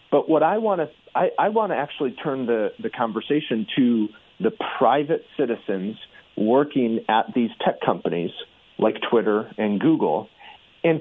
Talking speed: 145 wpm